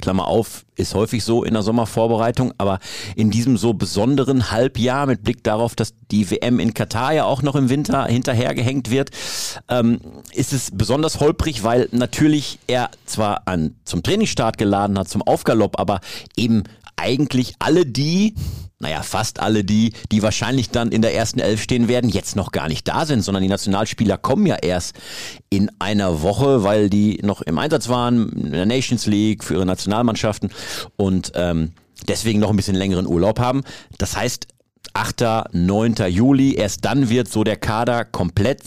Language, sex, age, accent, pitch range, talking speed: German, male, 50-69, German, 105-130 Hz, 170 wpm